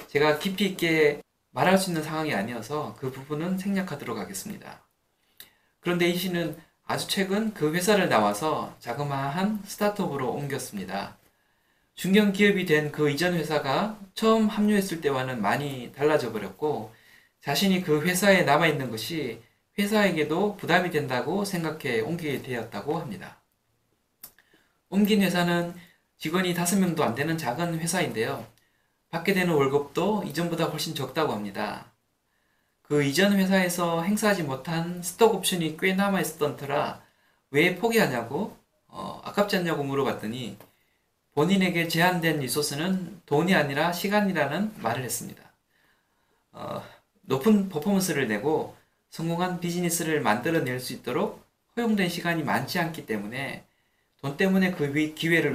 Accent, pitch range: native, 145-190 Hz